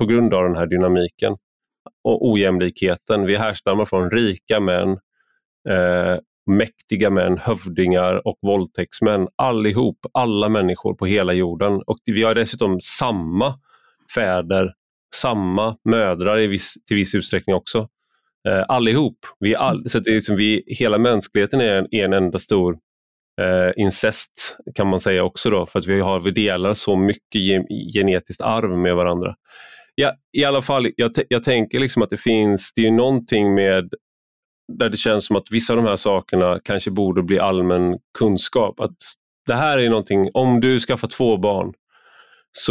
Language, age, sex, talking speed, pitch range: English, 30-49, male, 165 wpm, 95-115 Hz